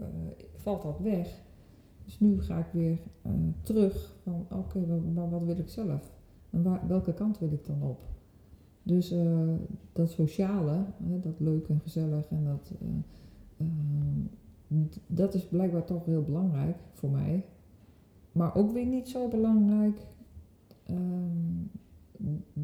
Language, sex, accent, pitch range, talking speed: Dutch, female, Dutch, 135-175 Hz, 125 wpm